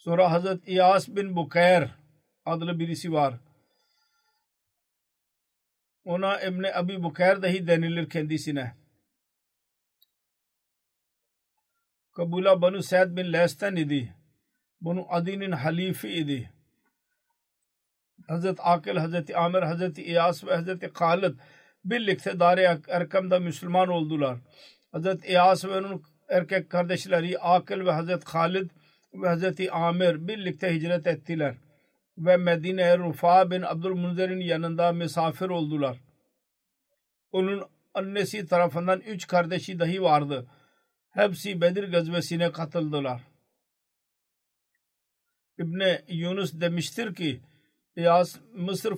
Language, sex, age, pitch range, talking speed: Turkish, male, 50-69, 165-190 Hz, 105 wpm